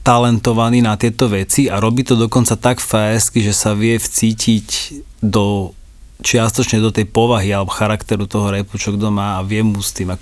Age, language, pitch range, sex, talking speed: 30-49, Slovak, 105-125 Hz, male, 180 wpm